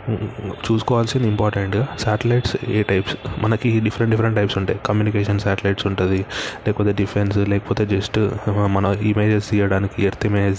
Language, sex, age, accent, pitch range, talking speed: Telugu, male, 20-39, native, 100-115 Hz, 125 wpm